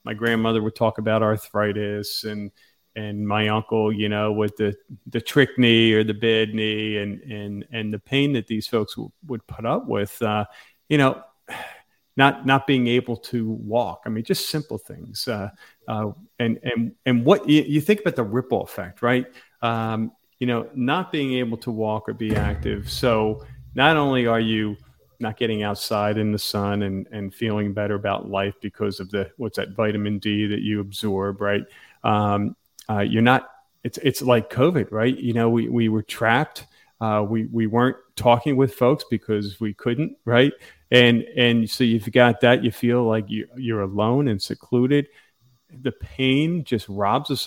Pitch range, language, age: 105-125 Hz, English, 40-59